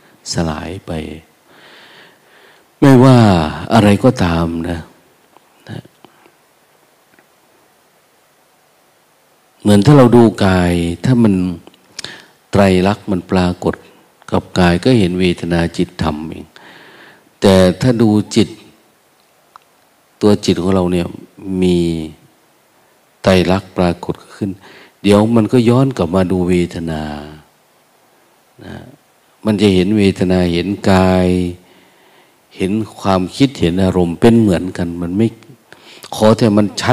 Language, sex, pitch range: Thai, male, 85-105 Hz